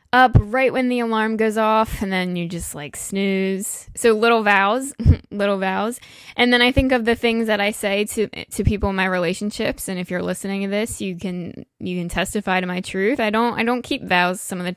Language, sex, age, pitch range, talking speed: English, female, 10-29, 190-230 Hz, 230 wpm